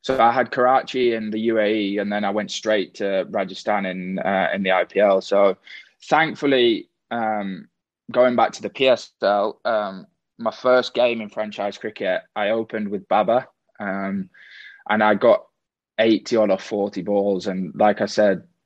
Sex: male